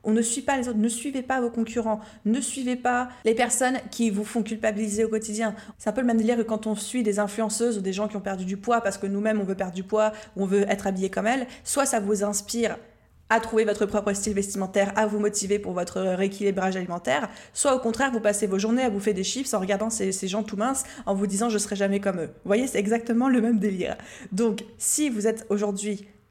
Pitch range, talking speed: 200-230 Hz, 260 wpm